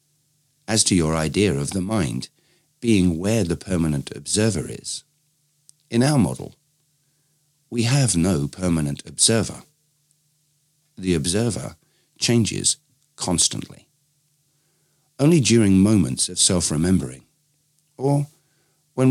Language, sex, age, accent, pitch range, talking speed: English, male, 50-69, British, 95-150 Hz, 100 wpm